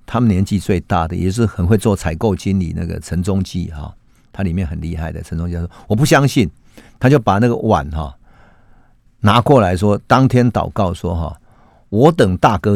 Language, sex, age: Chinese, male, 50-69